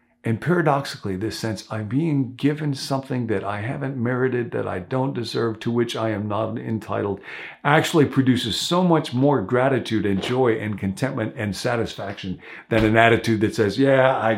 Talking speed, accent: 170 wpm, American